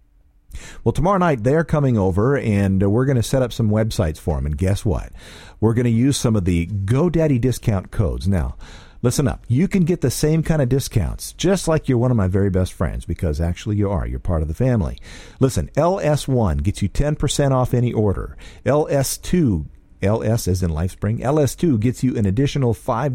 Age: 50-69